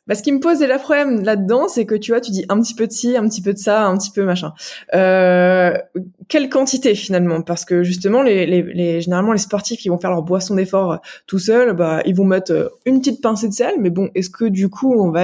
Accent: French